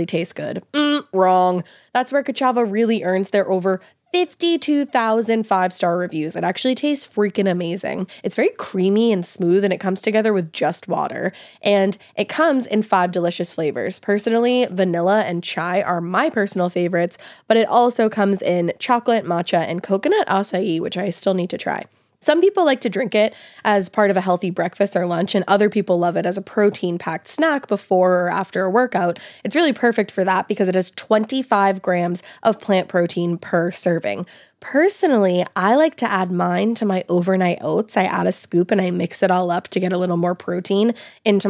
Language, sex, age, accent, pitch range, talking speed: English, female, 20-39, American, 180-220 Hz, 190 wpm